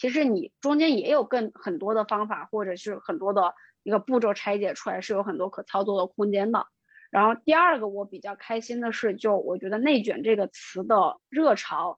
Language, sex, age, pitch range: Chinese, female, 20-39, 210-260 Hz